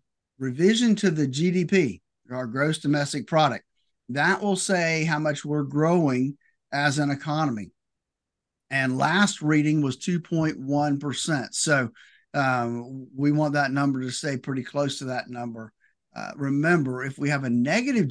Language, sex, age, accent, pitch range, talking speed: English, male, 50-69, American, 125-165 Hz, 145 wpm